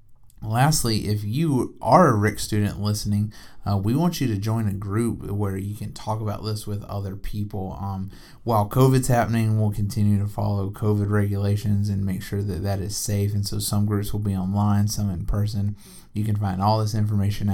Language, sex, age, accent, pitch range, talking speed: English, male, 30-49, American, 105-120 Hz, 200 wpm